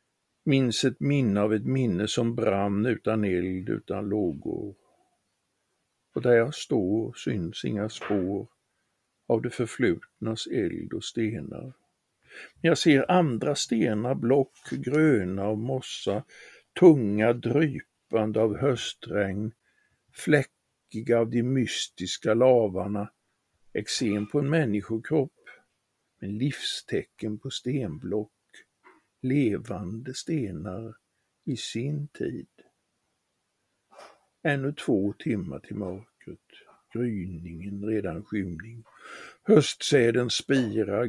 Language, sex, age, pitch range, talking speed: Swedish, male, 60-79, 100-125 Hz, 95 wpm